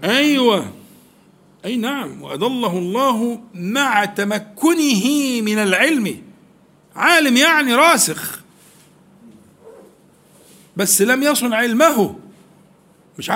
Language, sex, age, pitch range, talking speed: Arabic, male, 50-69, 180-255 Hz, 75 wpm